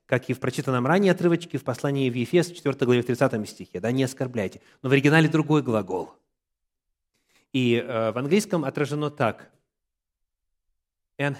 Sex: male